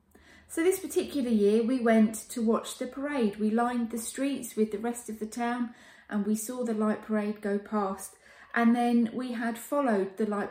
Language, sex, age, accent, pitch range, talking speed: English, female, 30-49, British, 200-260 Hz, 200 wpm